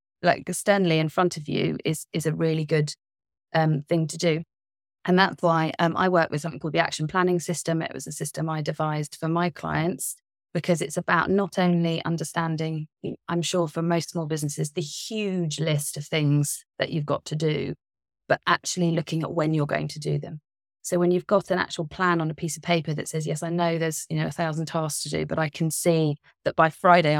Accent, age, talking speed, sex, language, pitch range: British, 30-49, 225 wpm, female, English, 150-175 Hz